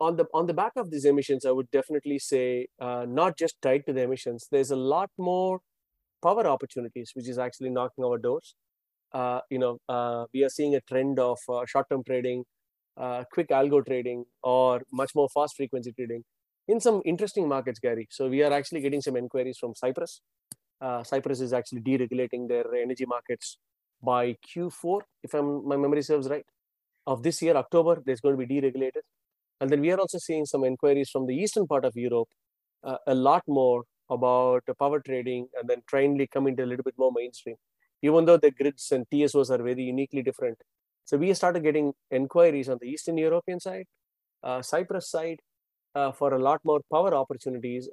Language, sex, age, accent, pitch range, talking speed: English, male, 30-49, Indian, 125-150 Hz, 195 wpm